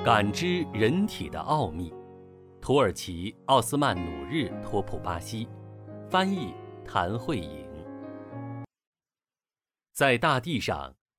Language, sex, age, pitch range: Chinese, male, 50-69, 95-135 Hz